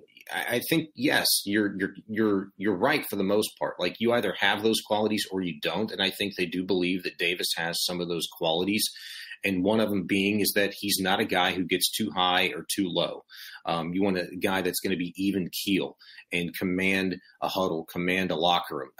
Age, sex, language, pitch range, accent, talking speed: 30-49, male, English, 90-105 Hz, American, 225 wpm